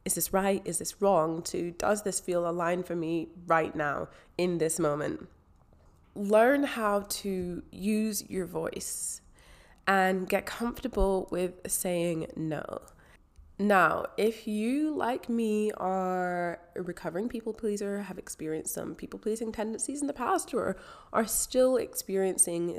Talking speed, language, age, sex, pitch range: 140 wpm, English, 20-39, female, 160-200 Hz